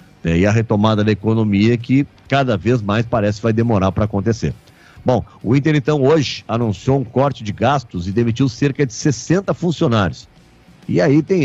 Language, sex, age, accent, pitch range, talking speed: Portuguese, male, 50-69, Brazilian, 105-145 Hz, 175 wpm